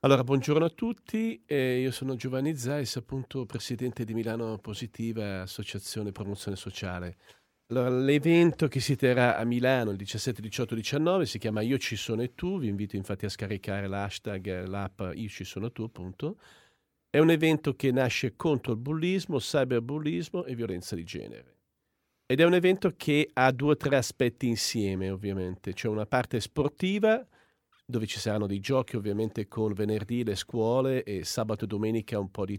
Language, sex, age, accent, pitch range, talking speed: Italian, male, 40-59, native, 100-135 Hz, 170 wpm